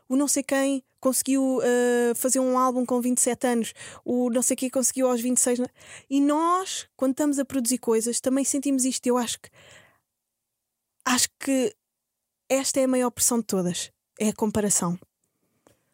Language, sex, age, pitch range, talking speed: Portuguese, female, 20-39, 220-270 Hz, 160 wpm